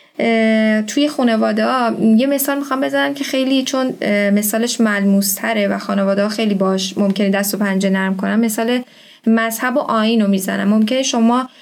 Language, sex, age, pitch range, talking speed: Persian, female, 10-29, 200-250 Hz, 155 wpm